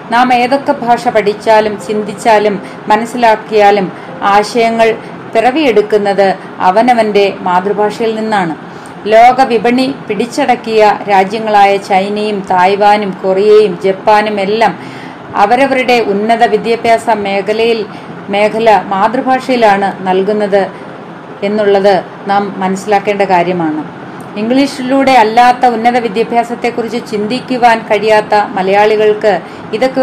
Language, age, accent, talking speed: Malayalam, 30-49, native, 75 wpm